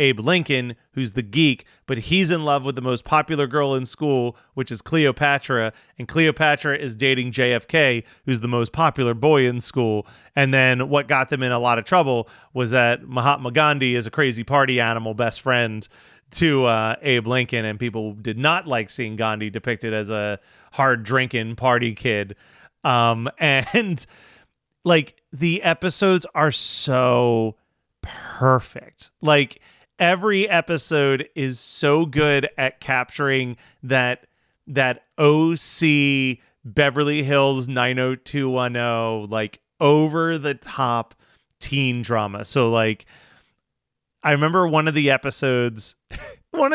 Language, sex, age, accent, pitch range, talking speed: English, male, 30-49, American, 120-155 Hz, 135 wpm